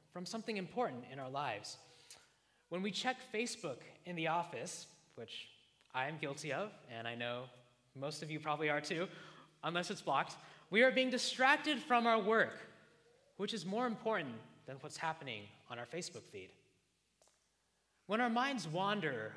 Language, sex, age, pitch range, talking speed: English, male, 20-39, 130-200 Hz, 160 wpm